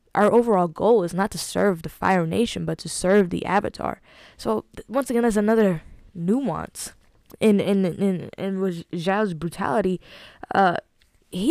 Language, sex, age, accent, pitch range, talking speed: English, female, 10-29, American, 165-210 Hz, 165 wpm